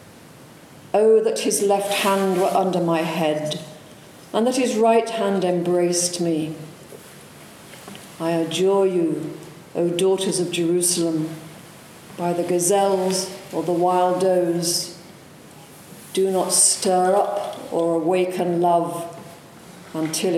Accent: British